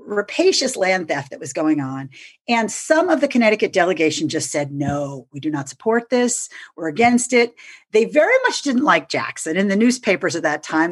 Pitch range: 175-260 Hz